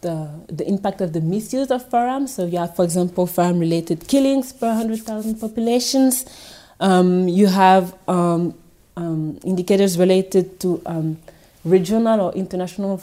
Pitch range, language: 165-195 Hz, English